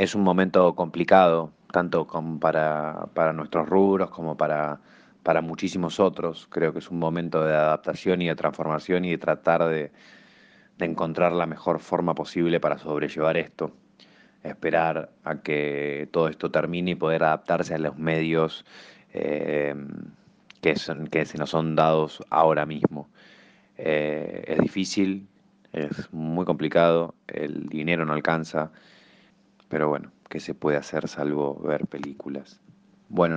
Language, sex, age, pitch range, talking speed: Spanish, male, 20-39, 75-85 Hz, 140 wpm